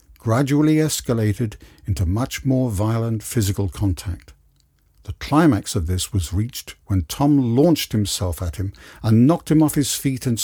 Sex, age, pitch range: male, 60-79, 85-120 Hz